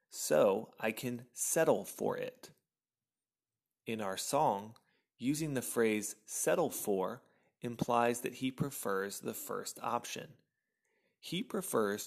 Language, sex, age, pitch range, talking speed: English, male, 30-49, 110-145 Hz, 115 wpm